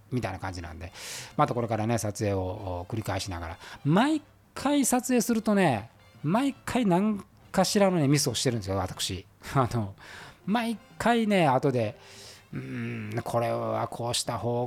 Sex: male